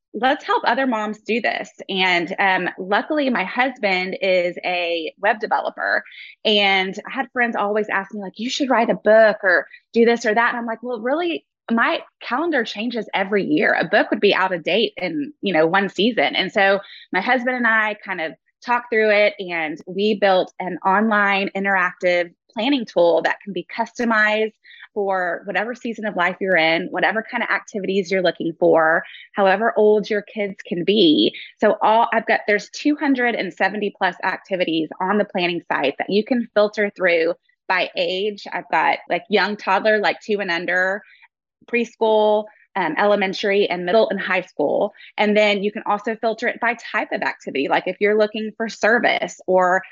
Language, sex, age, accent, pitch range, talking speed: English, female, 20-39, American, 185-230 Hz, 185 wpm